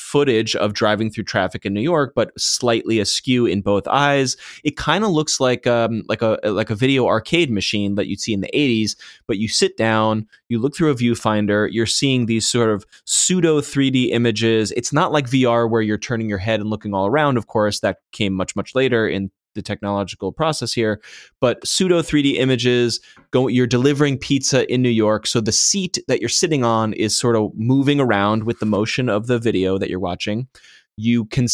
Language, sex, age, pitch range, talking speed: English, male, 20-39, 105-130 Hz, 205 wpm